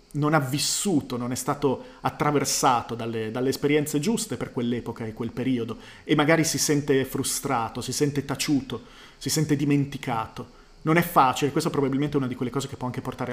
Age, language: 30-49, Italian